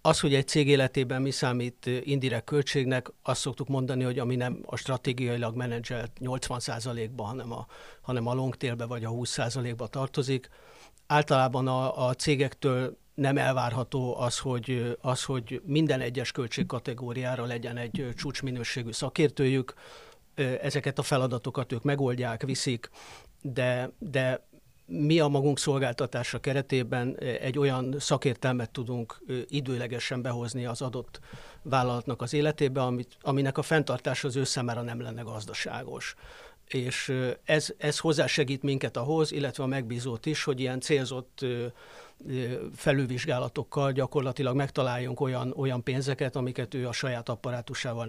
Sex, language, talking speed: male, Hungarian, 130 wpm